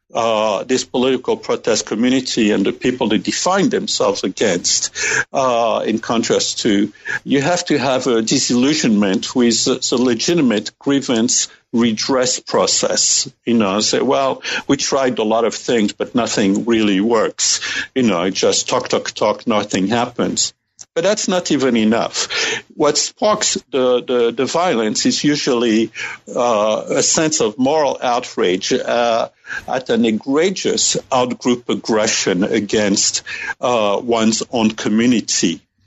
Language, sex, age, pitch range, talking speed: English, male, 60-79, 110-145 Hz, 135 wpm